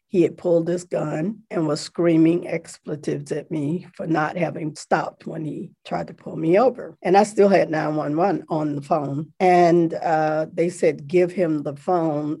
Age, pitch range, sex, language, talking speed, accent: 40-59, 155-180 Hz, female, English, 185 wpm, American